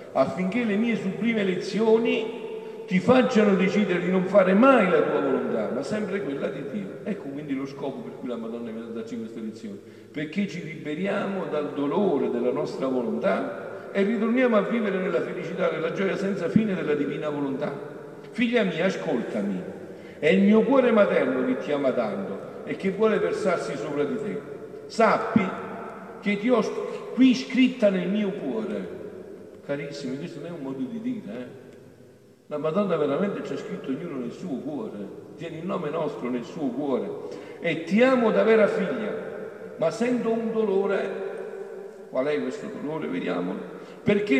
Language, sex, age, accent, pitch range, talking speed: Italian, male, 50-69, native, 170-225 Hz, 165 wpm